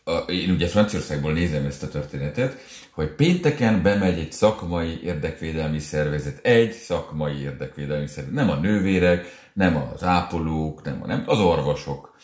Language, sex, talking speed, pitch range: Hungarian, male, 140 wpm, 75-100 Hz